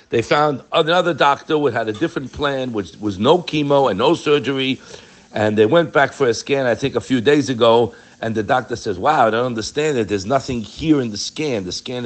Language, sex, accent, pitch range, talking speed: English, male, American, 110-155 Hz, 230 wpm